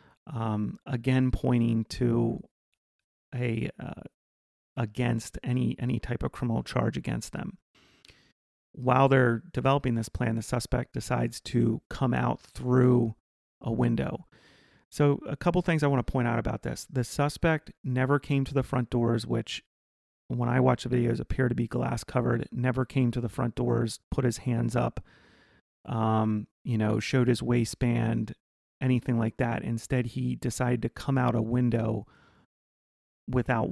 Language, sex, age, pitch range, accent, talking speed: English, male, 30-49, 115-130 Hz, American, 155 wpm